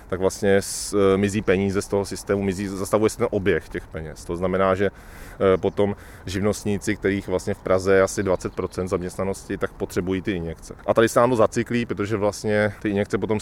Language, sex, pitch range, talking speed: Czech, male, 100-115 Hz, 190 wpm